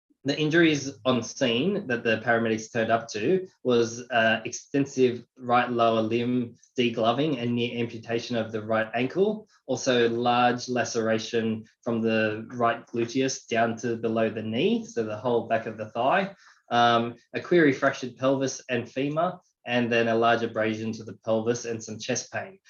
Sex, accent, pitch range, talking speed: male, Australian, 115-140 Hz, 165 wpm